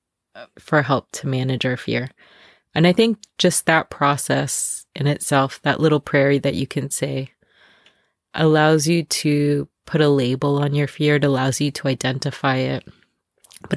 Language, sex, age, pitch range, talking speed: English, female, 20-39, 140-160 Hz, 160 wpm